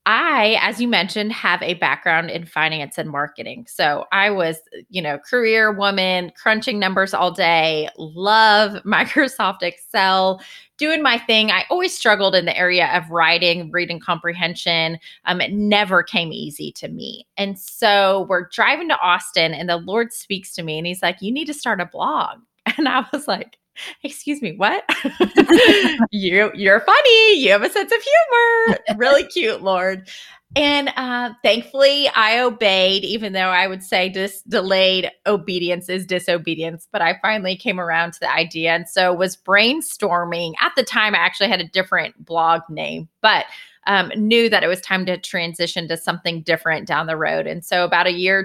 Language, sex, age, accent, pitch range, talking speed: English, female, 20-39, American, 170-225 Hz, 175 wpm